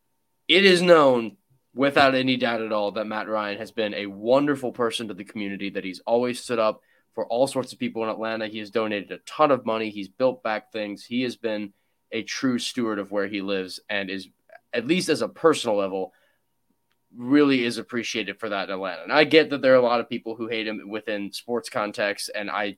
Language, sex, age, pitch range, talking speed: English, male, 20-39, 100-125 Hz, 225 wpm